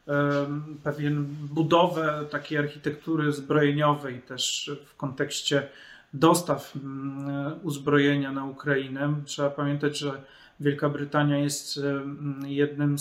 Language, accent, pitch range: Polish, native, 145-160 Hz